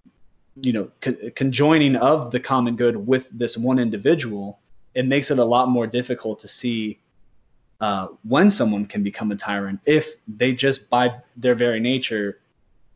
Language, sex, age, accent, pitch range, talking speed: English, male, 20-39, American, 110-130 Hz, 155 wpm